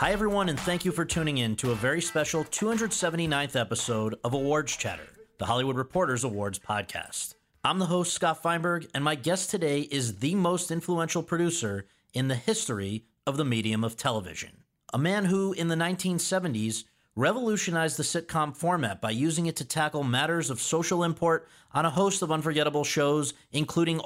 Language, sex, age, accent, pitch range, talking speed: English, male, 40-59, American, 130-175 Hz, 175 wpm